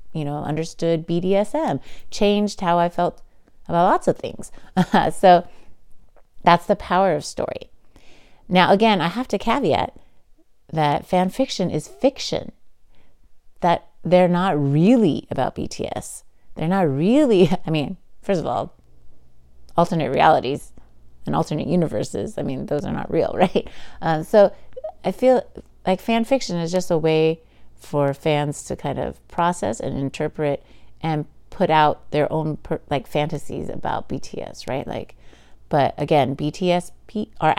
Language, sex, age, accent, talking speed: English, female, 30-49, American, 145 wpm